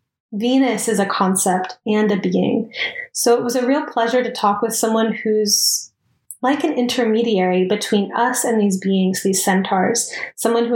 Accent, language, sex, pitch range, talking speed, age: American, English, female, 195-230 Hz, 165 wpm, 20-39